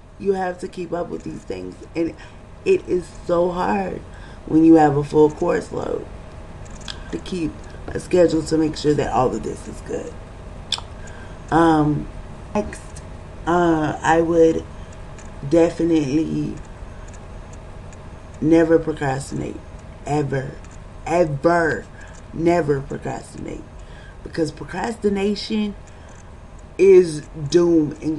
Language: English